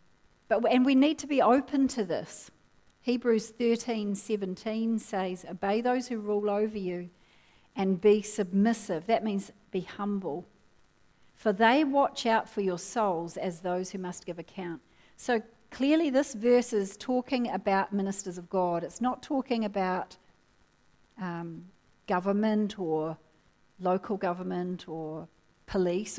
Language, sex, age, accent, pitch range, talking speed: English, female, 40-59, Australian, 180-225 Hz, 135 wpm